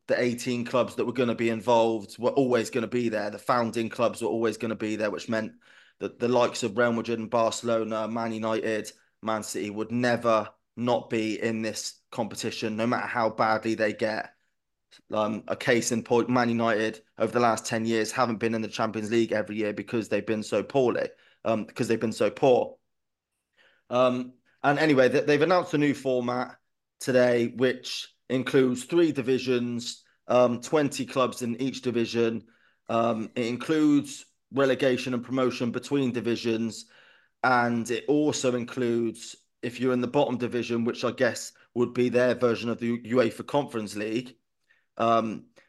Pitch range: 115-125 Hz